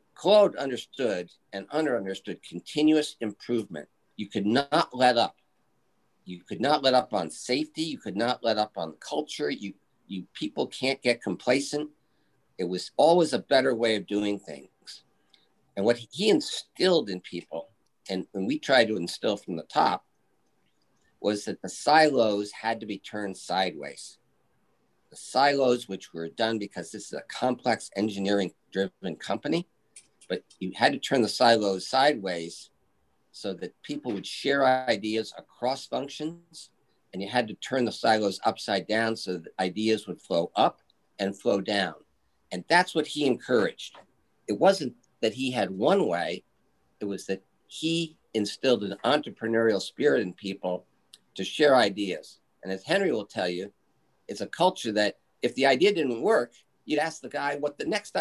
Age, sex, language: 50-69, male, English